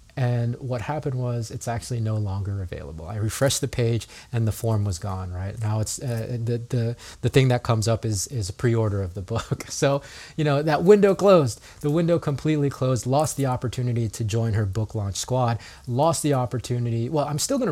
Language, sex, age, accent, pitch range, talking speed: English, male, 30-49, American, 115-140 Hz, 210 wpm